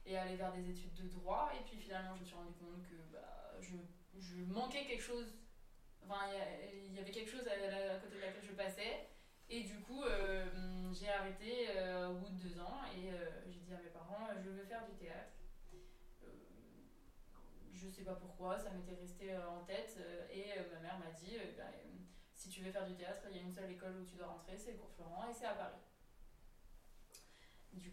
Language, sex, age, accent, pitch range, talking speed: French, female, 20-39, French, 180-205 Hz, 230 wpm